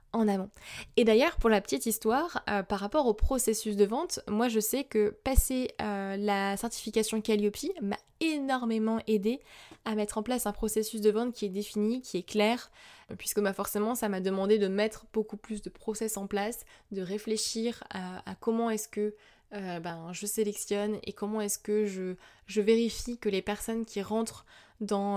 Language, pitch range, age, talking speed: French, 200-225 Hz, 20-39, 190 wpm